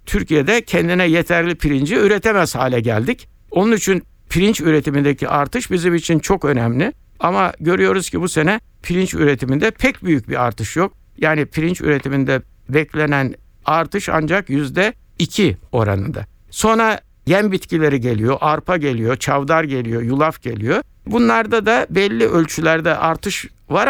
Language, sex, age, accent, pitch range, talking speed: Turkish, male, 60-79, native, 120-180 Hz, 130 wpm